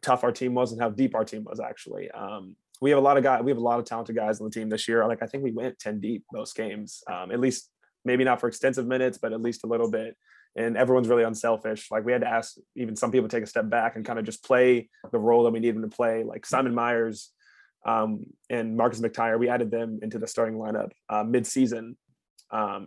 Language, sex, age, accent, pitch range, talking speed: English, male, 20-39, American, 115-125 Hz, 260 wpm